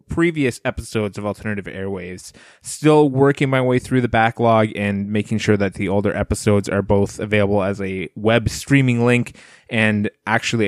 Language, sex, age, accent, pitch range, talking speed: English, male, 20-39, American, 105-125 Hz, 165 wpm